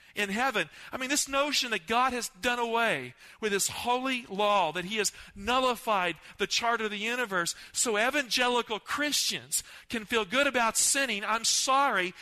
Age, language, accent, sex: 50-69, English, American, male